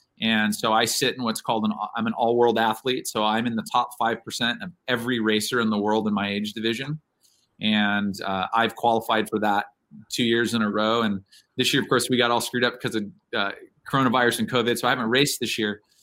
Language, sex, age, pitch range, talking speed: English, male, 30-49, 110-135 Hz, 230 wpm